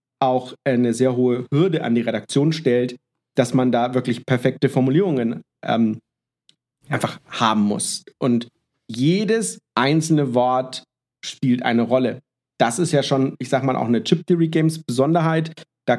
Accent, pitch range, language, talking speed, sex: German, 125-155 Hz, German, 140 wpm, male